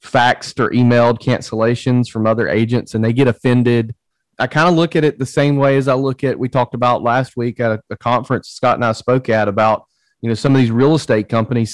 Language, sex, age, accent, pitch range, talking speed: English, male, 30-49, American, 115-145 Hz, 240 wpm